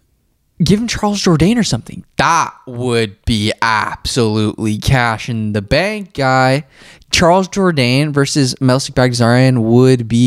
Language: English